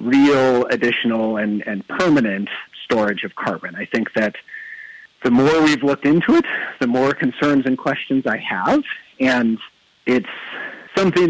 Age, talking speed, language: 40-59, 145 wpm, English